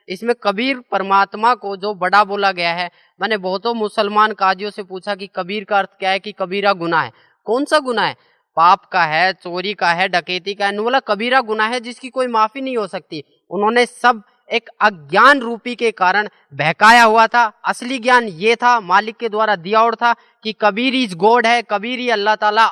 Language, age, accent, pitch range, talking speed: Hindi, 20-39, native, 200-235 Hz, 205 wpm